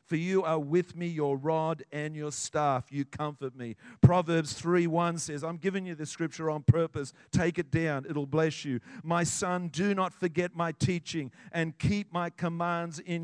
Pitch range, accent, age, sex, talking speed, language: 145-175 Hz, Australian, 50-69, male, 190 wpm, English